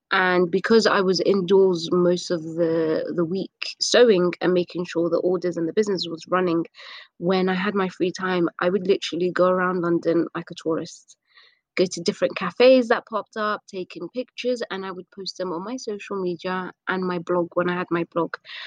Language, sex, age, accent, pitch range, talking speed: English, female, 20-39, British, 180-215 Hz, 200 wpm